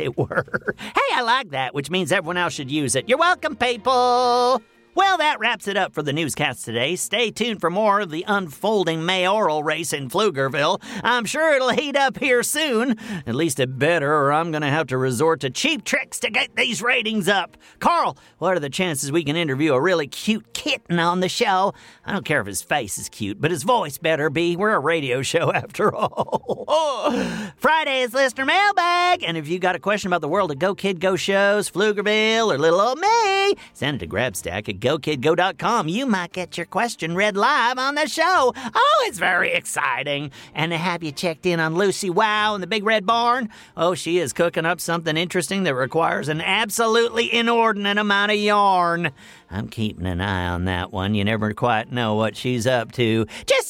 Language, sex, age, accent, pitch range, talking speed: English, male, 40-59, American, 160-240 Hz, 205 wpm